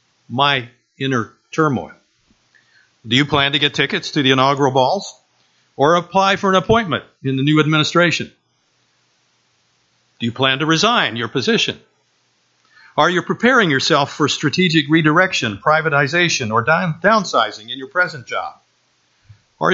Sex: male